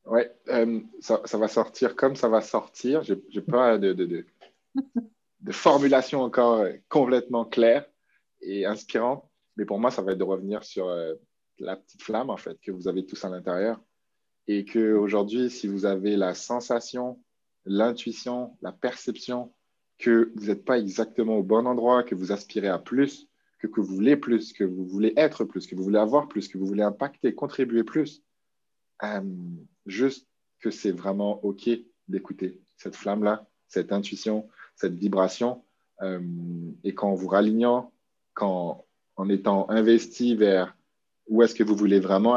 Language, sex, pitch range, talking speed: French, male, 95-120 Hz, 165 wpm